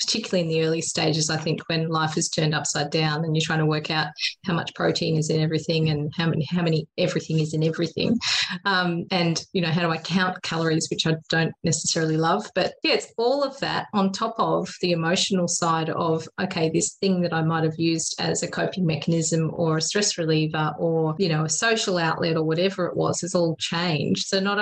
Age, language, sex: 30-49, English, female